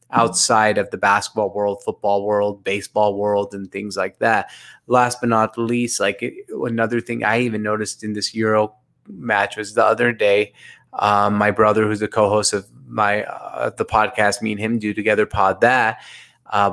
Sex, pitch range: male, 105-120 Hz